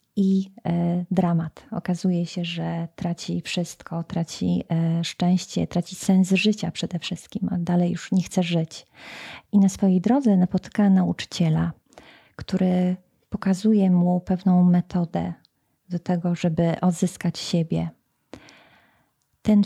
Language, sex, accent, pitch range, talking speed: Polish, female, native, 175-205 Hz, 115 wpm